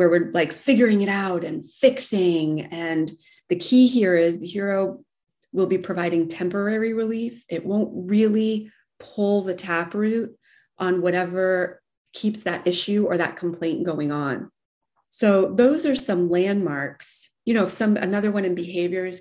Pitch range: 165-195 Hz